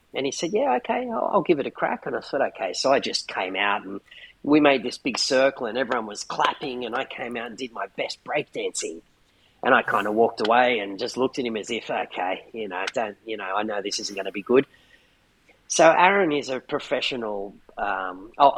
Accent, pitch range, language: Australian, 110-140 Hz, English